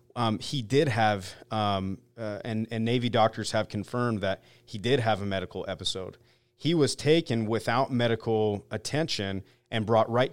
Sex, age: male, 40-59